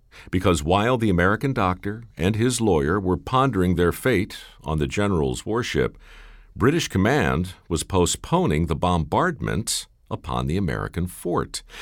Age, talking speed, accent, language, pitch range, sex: 50-69, 130 wpm, American, English, 75-110 Hz, male